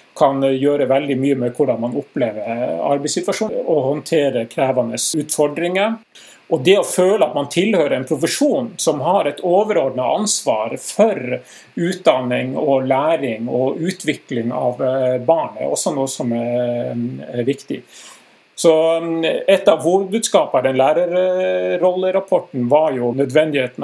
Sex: male